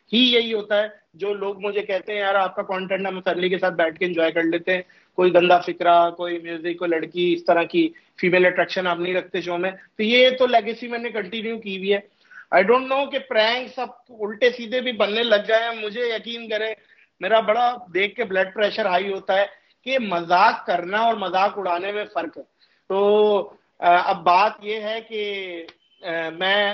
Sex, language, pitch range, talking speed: male, Urdu, 175-215 Hz, 95 wpm